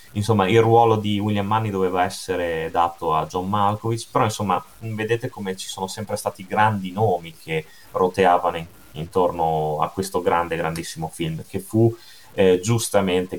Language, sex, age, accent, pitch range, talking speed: Italian, male, 30-49, native, 90-115 Hz, 150 wpm